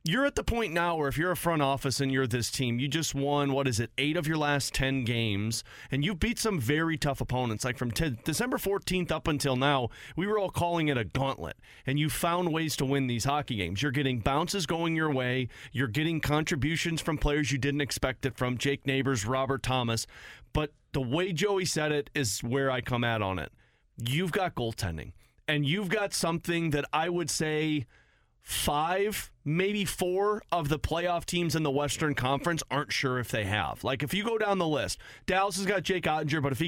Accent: American